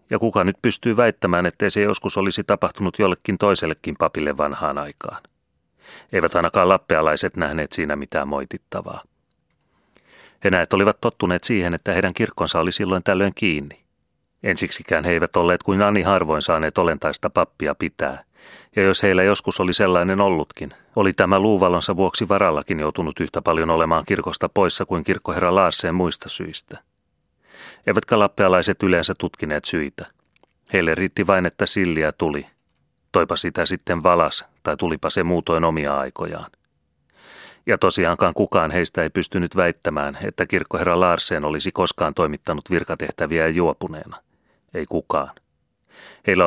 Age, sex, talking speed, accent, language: 30-49, male, 140 wpm, native, Finnish